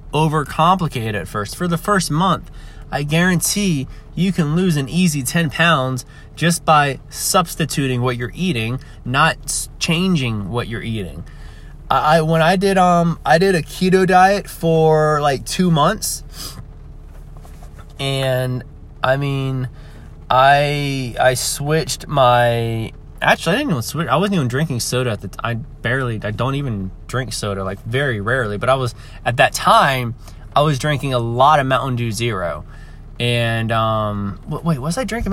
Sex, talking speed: male, 155 wpm